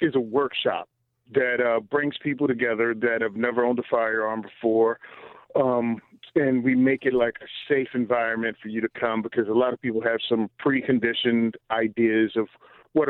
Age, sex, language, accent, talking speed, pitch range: 40-59, male, English, American, 180 wpm, 115-125 Hz